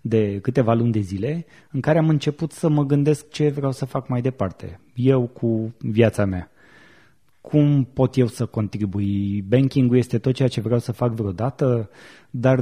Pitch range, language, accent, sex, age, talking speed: 110-140 Hz, Romanian, native, male, 20-39, 175 wpm